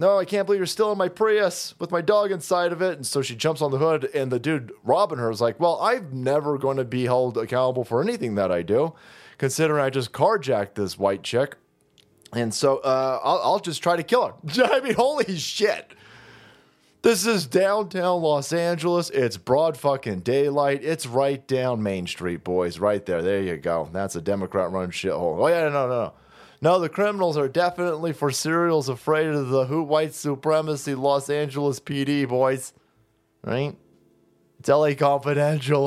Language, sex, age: English, male, 30-49